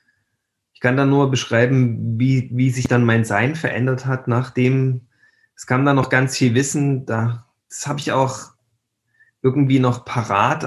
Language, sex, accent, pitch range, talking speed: German, male, German, 115-135 Hz, 165 wpm